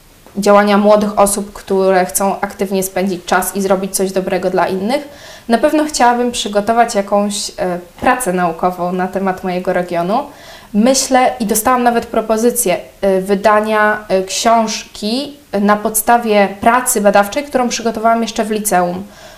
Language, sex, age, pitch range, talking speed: Polish, female, 20-39, 200-235 Hz, 125 wpm